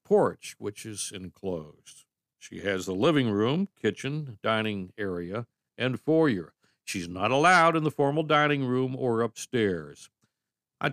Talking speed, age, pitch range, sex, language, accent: 135 wpm, 60-79, 105-165 Hz, male, English, American